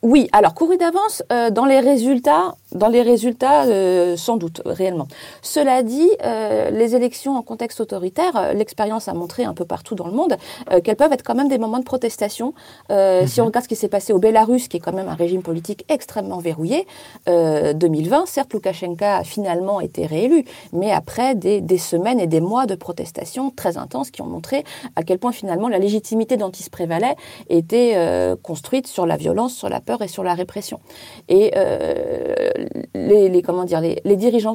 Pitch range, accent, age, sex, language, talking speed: 180-250 Hz, French, 40-59, female, French, 195 wpm